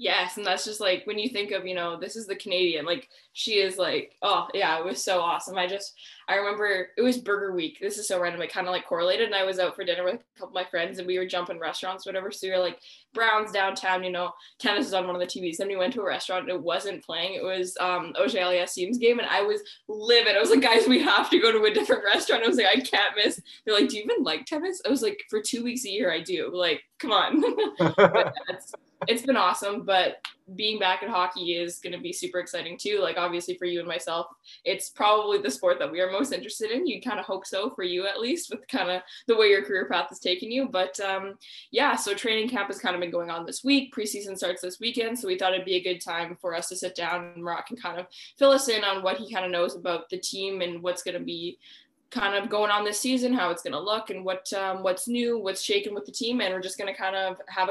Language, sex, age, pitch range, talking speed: English, female, 10-29, 180-225 Hz, 280 wpm